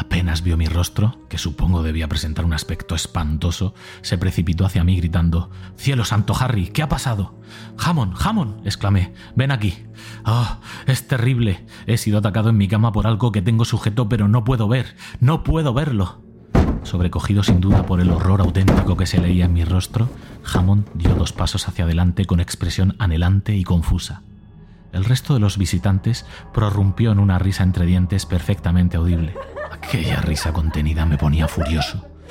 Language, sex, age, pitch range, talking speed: Spanish, male, 30-49, 85-105 Hz, 170 wpm